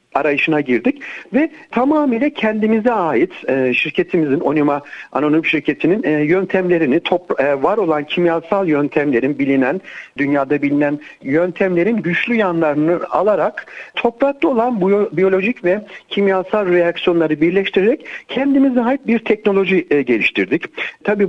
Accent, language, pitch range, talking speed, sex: native, Turkish, 160-235 Hz, 100 wpm, male